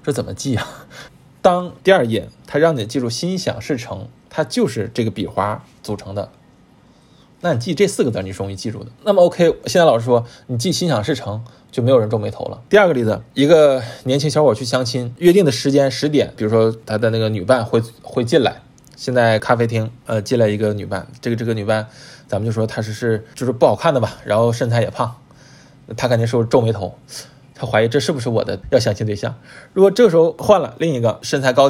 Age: 20-39